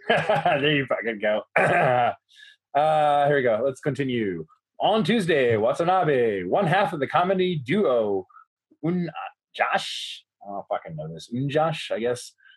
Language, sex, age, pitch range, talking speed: English, male, 20-39, 135-195 Hz, 145 wpm